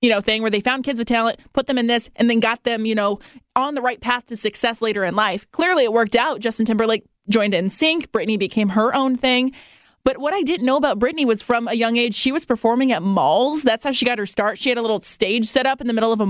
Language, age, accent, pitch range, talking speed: English, 20-39, American, 210-250 Hz, 285 wpm